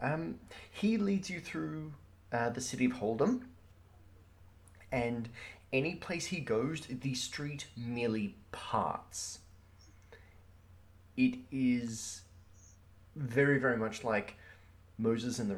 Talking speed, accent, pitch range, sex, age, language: 110 wpm, Australian, 90-125 Hz, male, 20-39, English